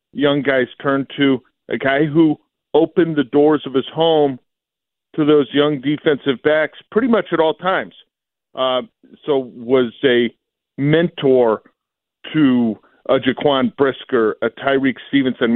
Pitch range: 125-150 Hz